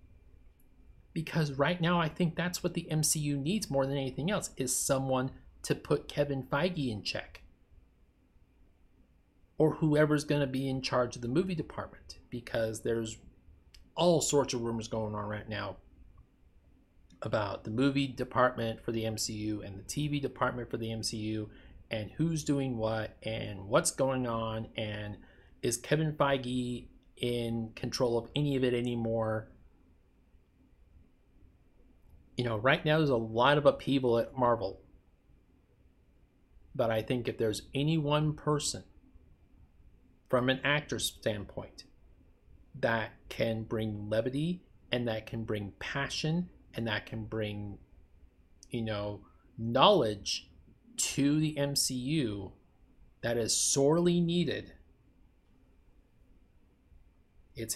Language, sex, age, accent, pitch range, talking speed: English, male, 30-49, American, 95-140 Hz, 130 wpm